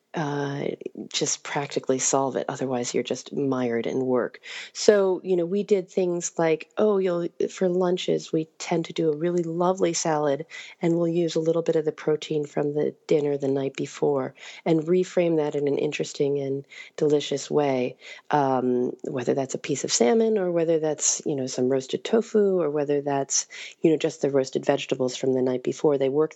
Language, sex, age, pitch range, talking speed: English, female, 40-59, 130-165 Hz, 190 wpm